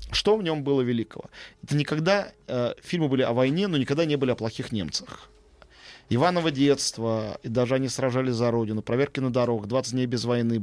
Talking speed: 190 wpm